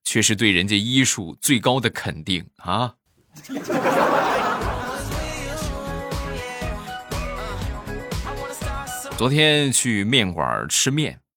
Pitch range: 90-135 Hz